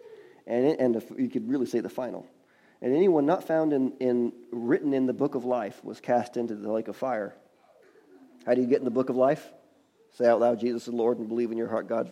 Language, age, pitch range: English, 40-59, 120-150 Hz